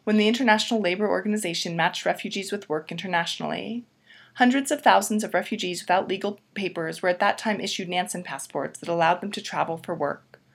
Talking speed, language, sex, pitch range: 180 wpm, English, female, 175-225 Hz